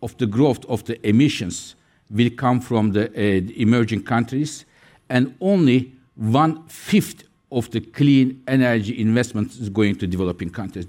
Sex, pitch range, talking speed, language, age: male, 110-150 Hz, 145 wpm, English, 60-79